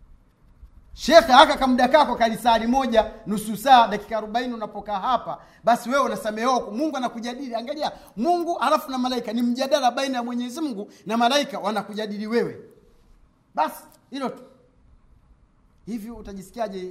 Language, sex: Swahili, male